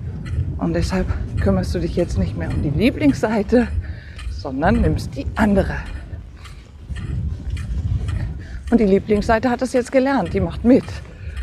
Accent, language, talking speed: German, German, 130 wpm